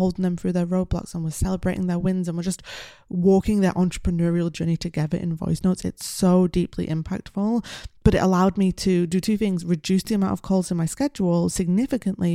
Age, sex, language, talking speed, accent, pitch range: 20-39, female, English, 205 wpm, British, 170-190 Hz